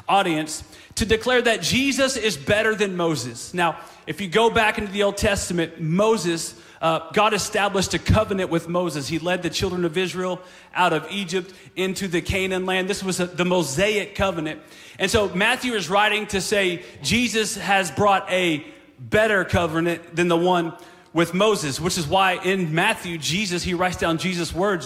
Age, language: 30-49, English